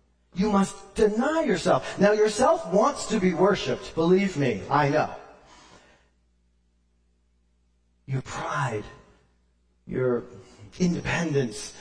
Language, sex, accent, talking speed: English, male, American, 90 wpm